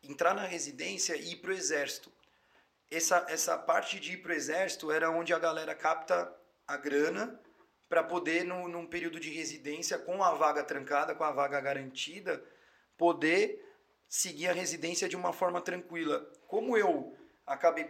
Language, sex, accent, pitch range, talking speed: Portuguese, male, Brazilian, 150-195 Hz, 165 wpm